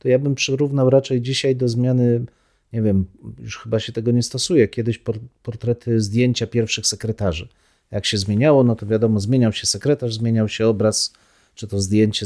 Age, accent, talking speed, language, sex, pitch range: 40-59, native, 175 wpm, Polish, male, 110-135 Hz